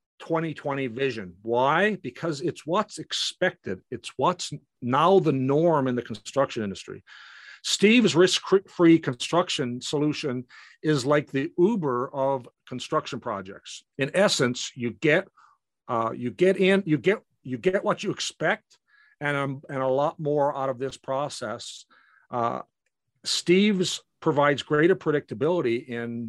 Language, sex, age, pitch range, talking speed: English, male, 50-69, 125-170 Hz, 130 wpm